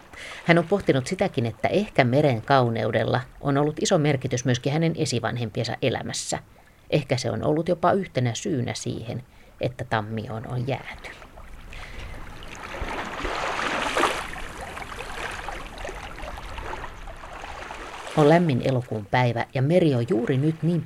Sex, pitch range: female, 115-145 Hz